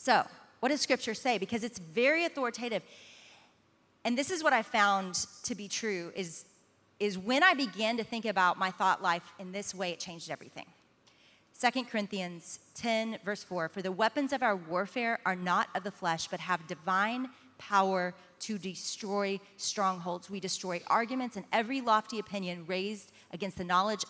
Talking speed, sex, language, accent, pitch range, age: 170 wpm, female, English, American, 180-225 Hz, 30-49